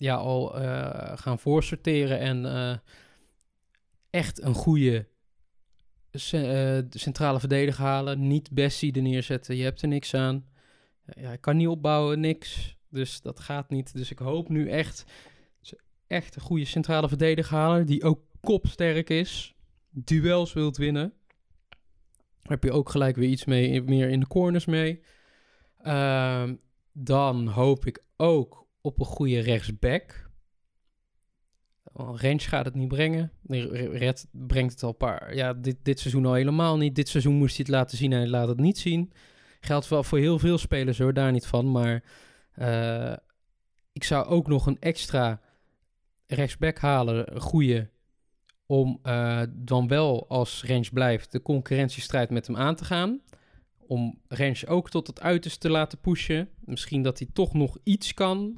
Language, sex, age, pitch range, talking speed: Dutch, male, 20-39, 125-155 Hz, 160 wpm